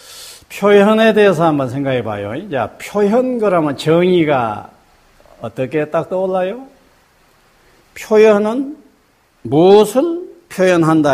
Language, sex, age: Korean, male, 50-69